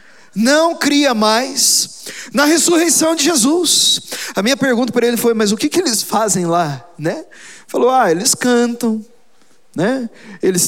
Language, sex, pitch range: Portuguese, male, 170-240 Hz